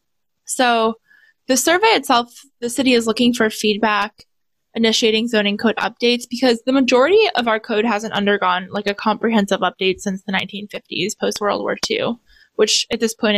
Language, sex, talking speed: English, female, 160 wpm